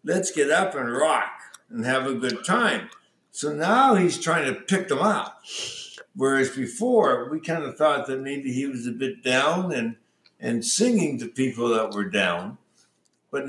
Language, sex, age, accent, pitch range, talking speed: English, male, 60-79, American, 125-190 Hz, 180 wpm